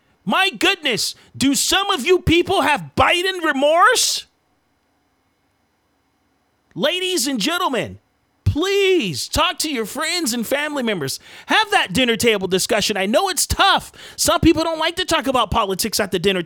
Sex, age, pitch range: male, 40-59, 230-315 Hz